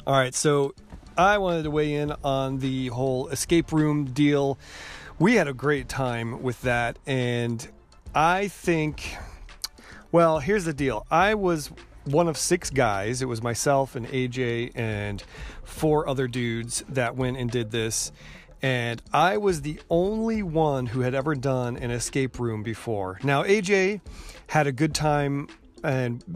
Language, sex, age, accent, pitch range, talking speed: English, male, 30-49, American, 125-155 Hz, 155 wpm